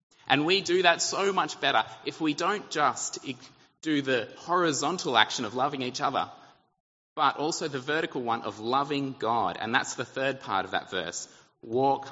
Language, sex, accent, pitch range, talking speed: English, male, Australian, 120-170 Hz, 180 wpm